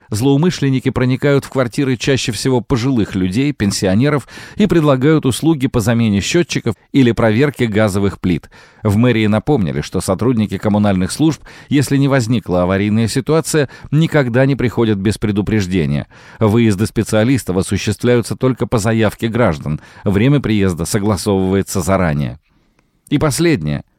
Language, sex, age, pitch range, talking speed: Russian, male, 40-59, 100-135 Hz, 125 wpm